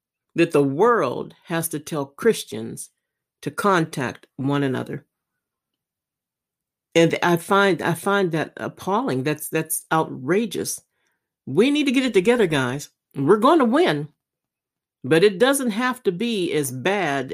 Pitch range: 145-200 Hz